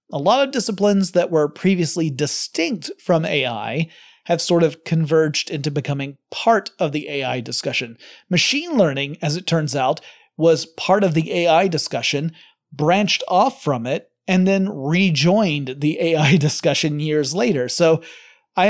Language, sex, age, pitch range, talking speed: English, male, 30-49, 140-185 Hz, 150 wpm